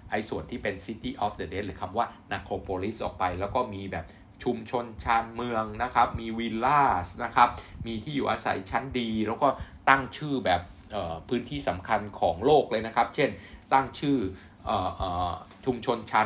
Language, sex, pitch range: Thai, male, 95-120 Hz